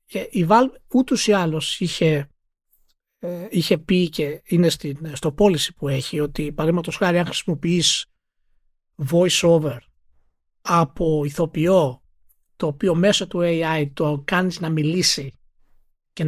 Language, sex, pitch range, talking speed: Greek, male, 155-215 Hz, 120 wpm